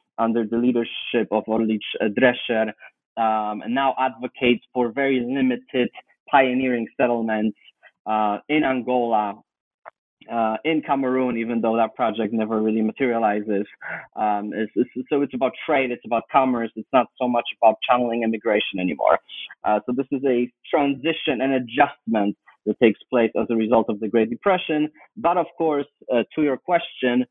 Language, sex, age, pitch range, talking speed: English, male, 30-49, 110-135 Hz, 150 wpm